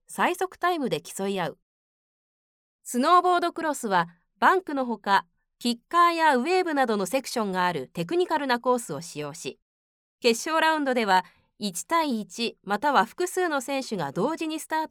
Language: Japanese